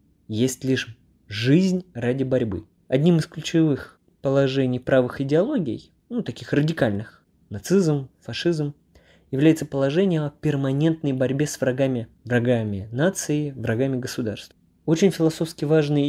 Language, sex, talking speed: Russian, male, 110 wpm